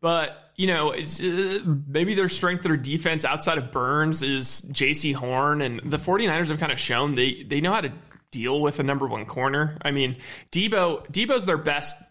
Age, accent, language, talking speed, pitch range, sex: 20-39, American, English, 200 wpm, 135-165 Hz, male